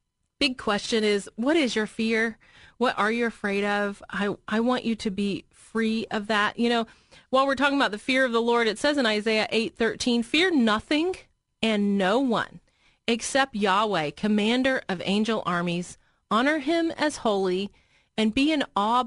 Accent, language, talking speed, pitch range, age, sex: American, English, 180 wpm, 195-240 Hz, 30-49, female